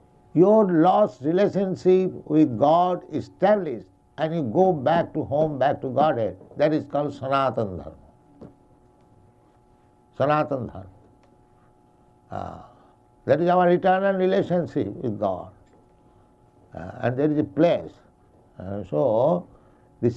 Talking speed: 115 wpm